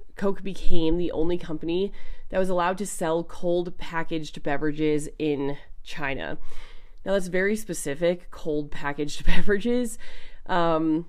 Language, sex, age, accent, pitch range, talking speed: English, female, 20-39, American, 145-195 Hz, 125 wpm